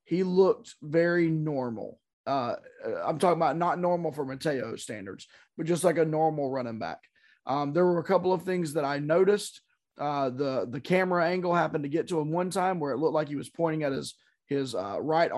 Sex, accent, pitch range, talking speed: male, American, 145-180 Hz, 210 wpm